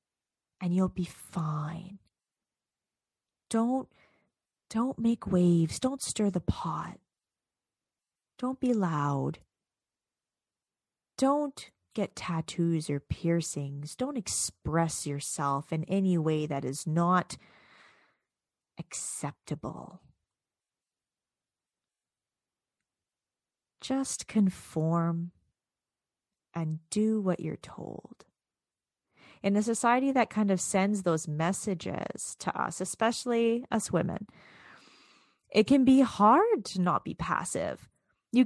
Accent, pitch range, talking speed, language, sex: American, 170-245 Hz, 95 wpm, English, female